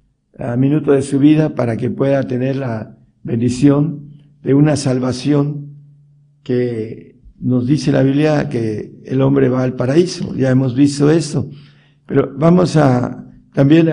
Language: Spanish